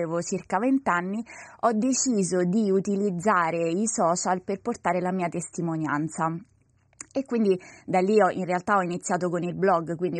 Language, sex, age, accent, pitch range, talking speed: Italian, female, 20-39, native, 175-215 Hz, 160 wpm